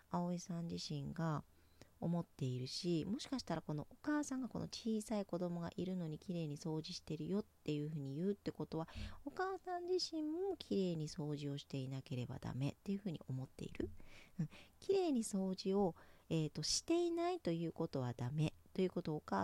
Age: 40-59